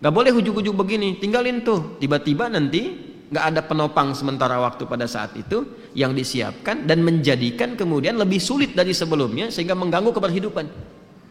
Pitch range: 135-200 Hz